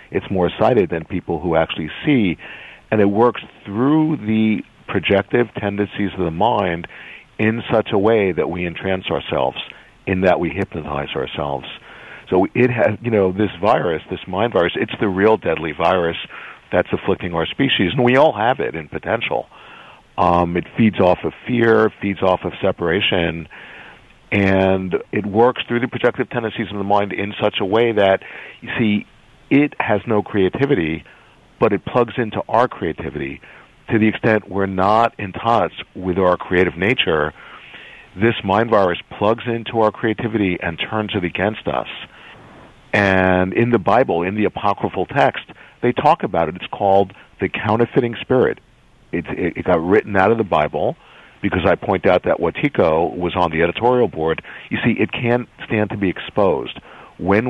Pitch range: 90-115 Hz